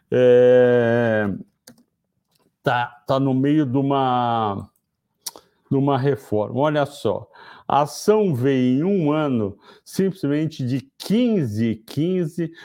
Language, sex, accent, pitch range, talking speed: Portuguese, male, Brazilian, 125-160 Hz, 105 wpm